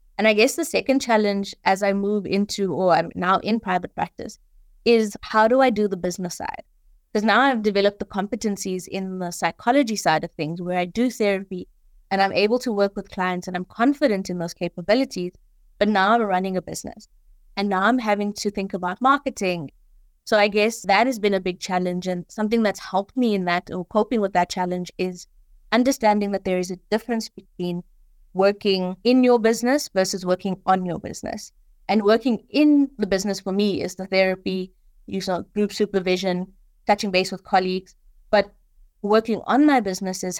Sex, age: female, 20-39